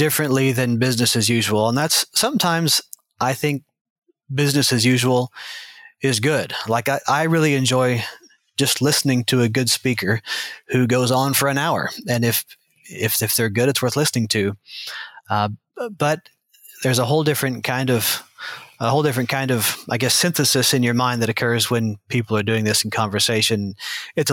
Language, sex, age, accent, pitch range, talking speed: English, male, 30-49, American, 115-135 Hz, 175 wpm